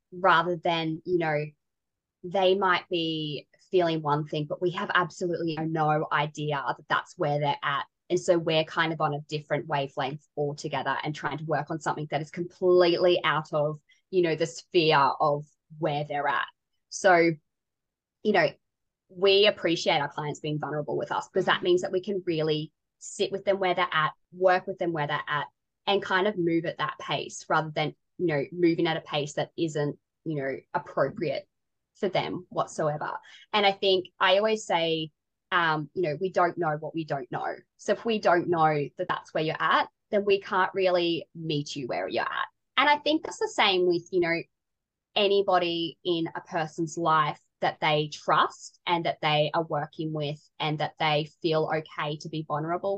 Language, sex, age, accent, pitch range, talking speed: English, female, 20-39, Australian, 150-180 Hz, 190 wpm